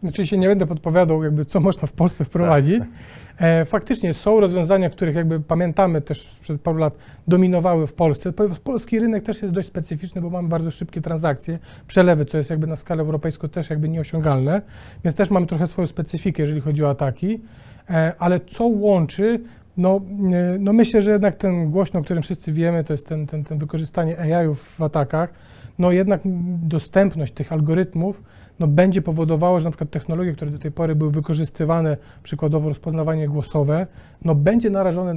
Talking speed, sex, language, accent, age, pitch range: 175 wpm, male, Polish, native, 30-49, 155-190 Hz